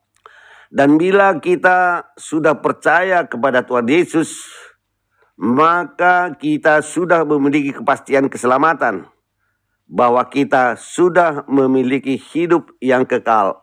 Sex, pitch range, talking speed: male, 125-175 Hz, 90 wpm